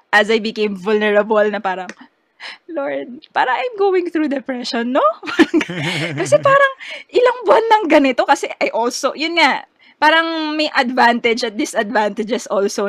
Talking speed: 140 wpm